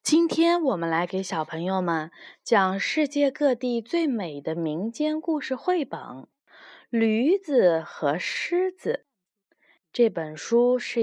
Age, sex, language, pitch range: 20-39, female, Chinese, 190-285 Hz